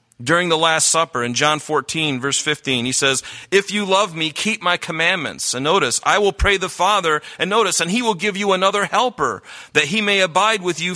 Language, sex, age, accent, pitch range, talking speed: English, male, 40-59, American, 130-200 Hz, 220 wpm